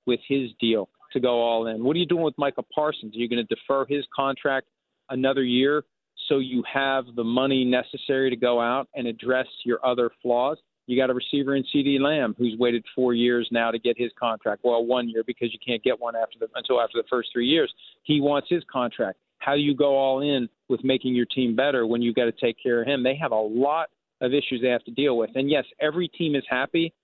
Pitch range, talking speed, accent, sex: 120-140 Hz, 240 wpm, American, male